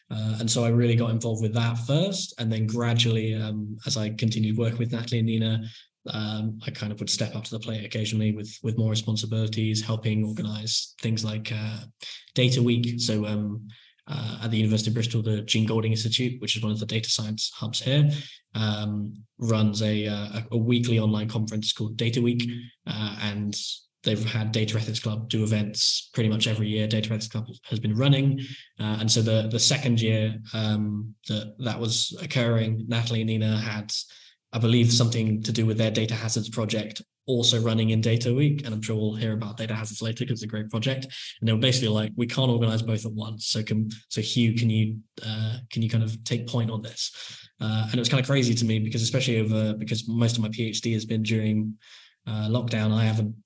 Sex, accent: male, British